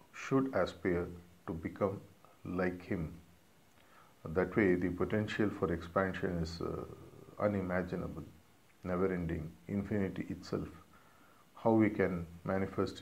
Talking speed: 105 wpm